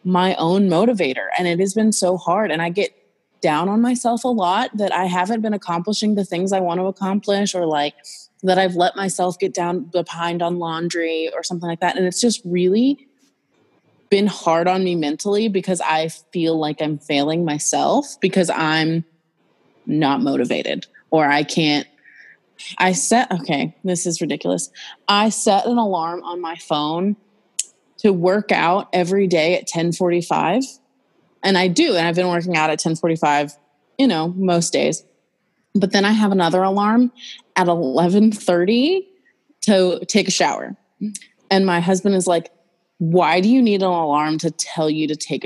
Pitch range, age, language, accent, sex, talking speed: 165-200 Hz, 20-39, English, American, female, 175 wpm